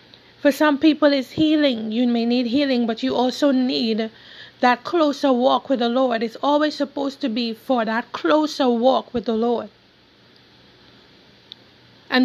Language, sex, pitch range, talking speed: English, female, 230-270 Hz, 155 wpm